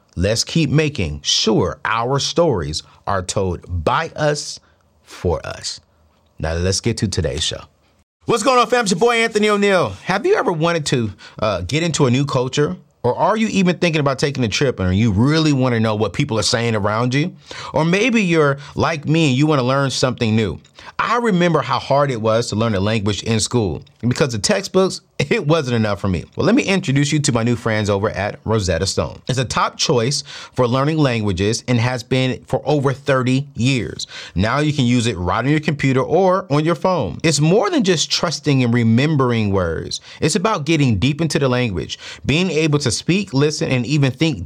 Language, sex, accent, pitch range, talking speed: English, male, American, 115-160 Hz, 205 wpm